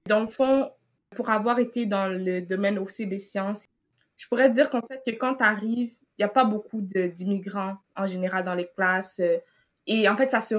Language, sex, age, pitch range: French, female, 20-39, 200-245 Hz